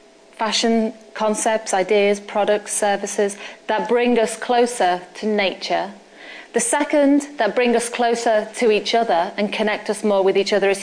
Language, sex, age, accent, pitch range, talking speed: English, female, 30-49, British, 200-245 Hz, 155 wpm